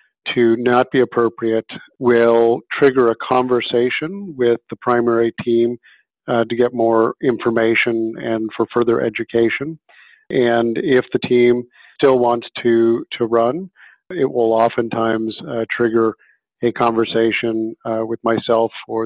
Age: 50-69